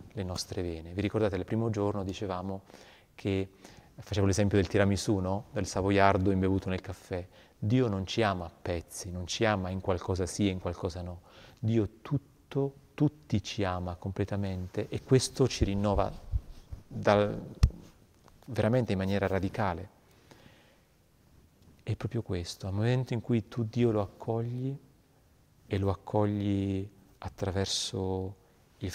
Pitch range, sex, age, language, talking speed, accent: 95-110 Hz, male, 30-49, Italian, 140 wpm, native